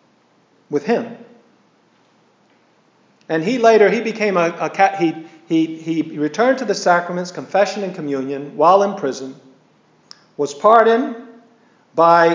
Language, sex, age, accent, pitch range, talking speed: English, male, 50-69, American, 140-205 Hz, 115 wpm